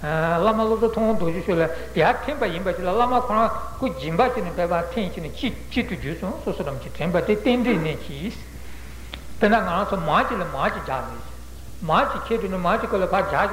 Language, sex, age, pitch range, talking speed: Italian, male, 60-79, 165-220 Hz, 155 wpm